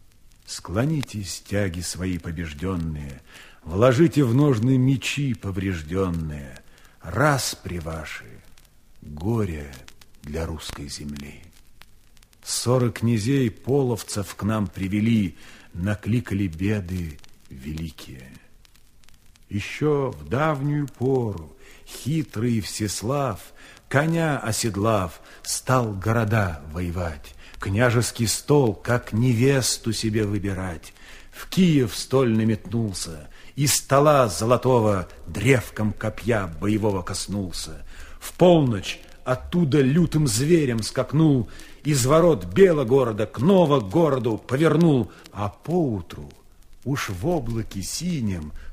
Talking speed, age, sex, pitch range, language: 90 wpm, 50-69, male, 95-135 Hz, Russian